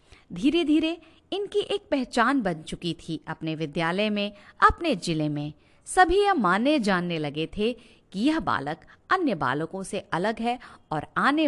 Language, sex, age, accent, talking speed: Hindi, female, 50-69, native, 150 wpm